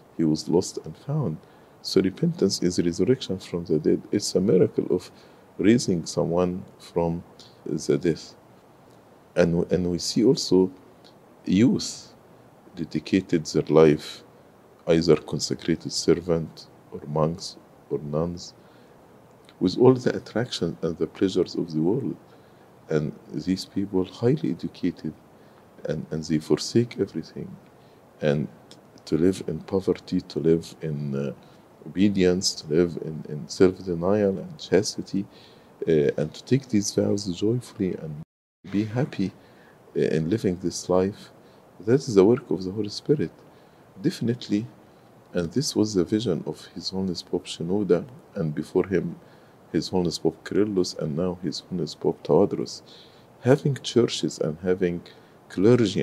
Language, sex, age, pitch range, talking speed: English, male, 50-69, 80-100 Hz, 135 wpm